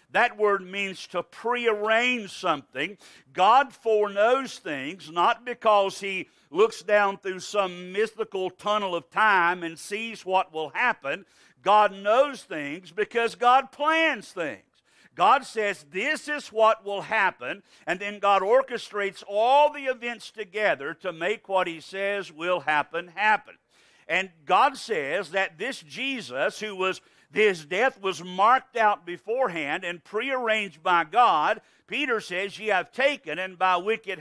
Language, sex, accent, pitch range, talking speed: English, male, American, 180-225 Hz, 140 wpm